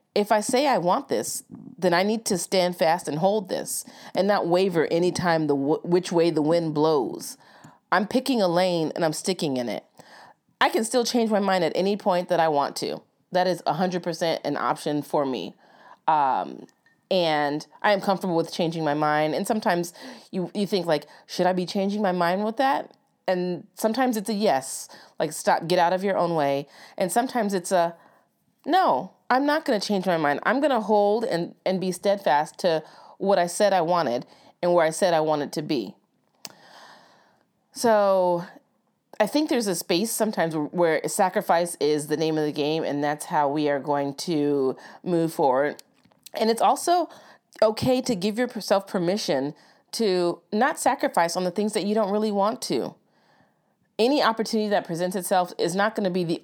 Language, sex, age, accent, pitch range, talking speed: English, female, 30-49, American, 160-210 Hz, 190 wpm